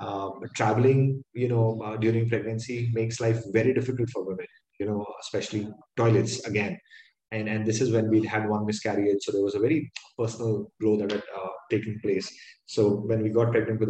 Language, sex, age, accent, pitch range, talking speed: English, male, 20-39, Indian, 105-120 Hz, 195 wpm